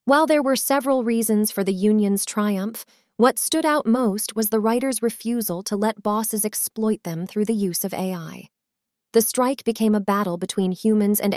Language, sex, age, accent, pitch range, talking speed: English, female, 30-49, American, 195-230 Hz, 185 wpm